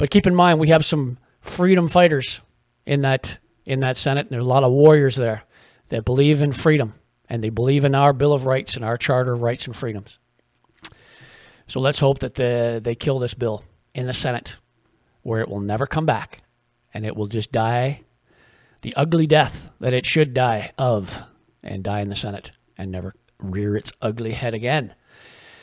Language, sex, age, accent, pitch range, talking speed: English, male, 40-59, American, 115-150 Hz, 195 wpm